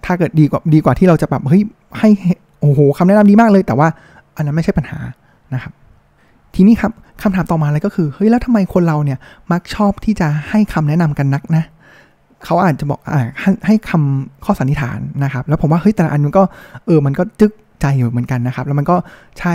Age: 20-39